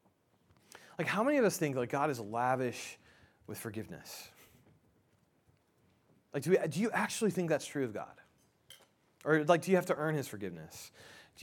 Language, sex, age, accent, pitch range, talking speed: English, male, 30-49, American, 120-160 Hz, 175 wpm